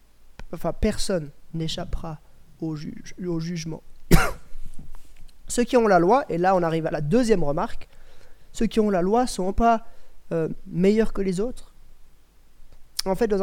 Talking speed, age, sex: 160 wpm, 30-49, male